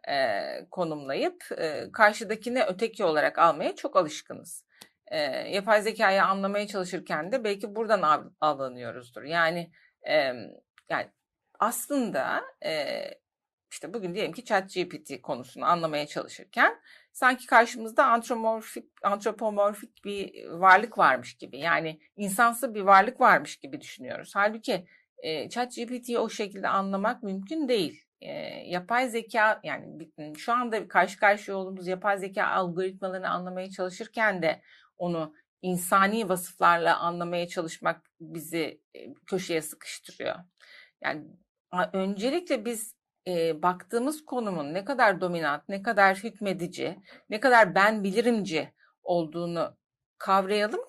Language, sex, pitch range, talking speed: Turkish, female, 180-245 Hz, 115 wpm